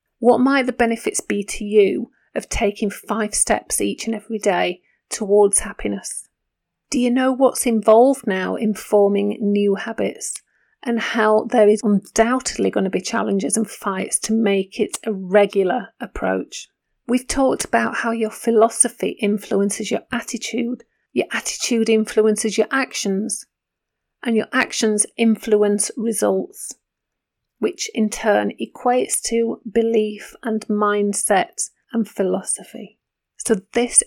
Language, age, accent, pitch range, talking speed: English, 40-59, British, 205-240 Hz, 130 wpm